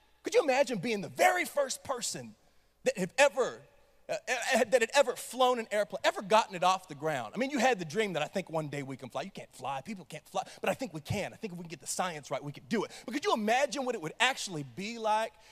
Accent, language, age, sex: American, English, 30-49, male